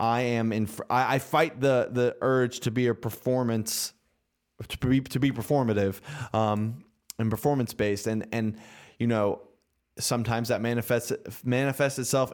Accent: American